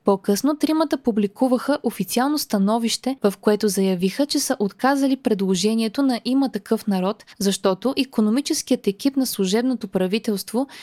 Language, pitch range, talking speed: Bulgarian, 200-260 Hz, 120 wpm